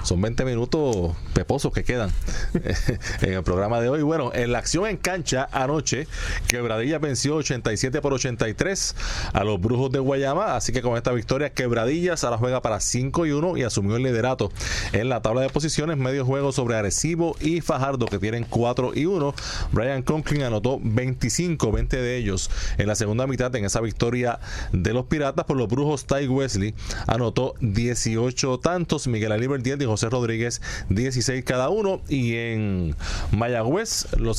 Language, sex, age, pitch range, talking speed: Spanish, male, 30-49, 110-140 Hz, 170 wpm